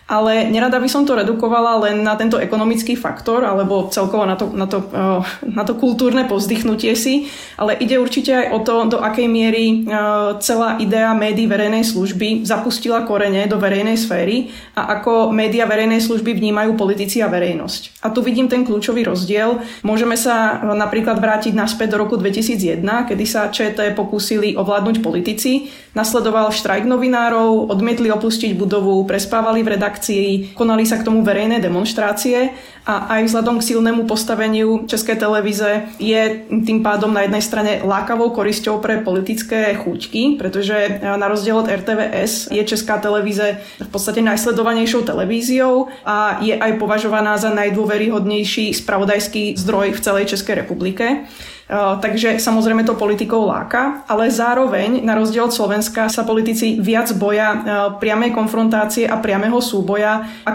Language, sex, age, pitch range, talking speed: Slovak, female, 20-39, 205-230 Hz, 150 wpm